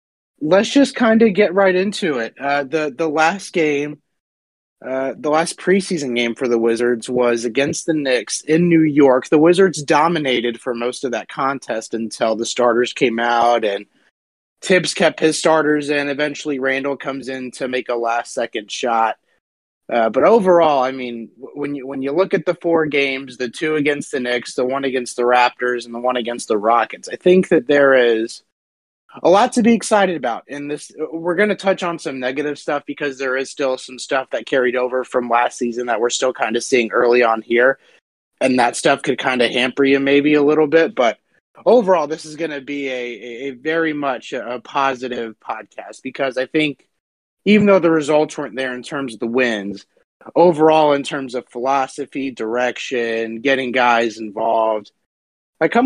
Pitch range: 120-155 Hz